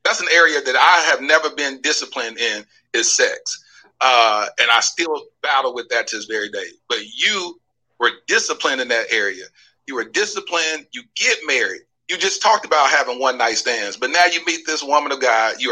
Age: 40-59